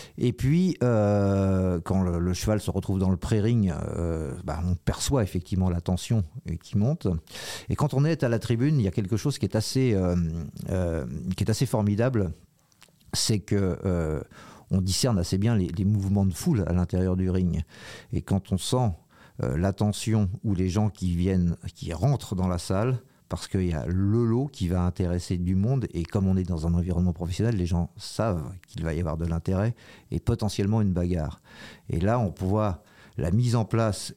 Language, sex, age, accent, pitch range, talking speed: French, male, 50-69, French, 90-110 Hz, 200 wpm